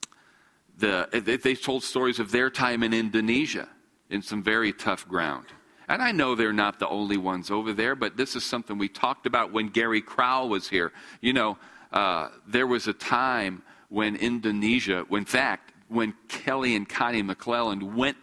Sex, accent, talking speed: male, American, 170 wpm